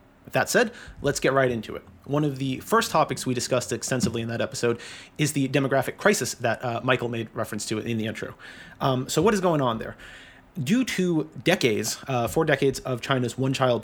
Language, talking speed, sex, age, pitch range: English, 210 wpm, male, 30-49, 115-135 Hz